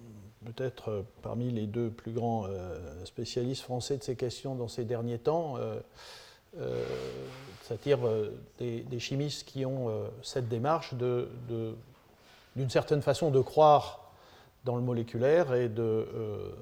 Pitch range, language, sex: 115-140 Hz, French, male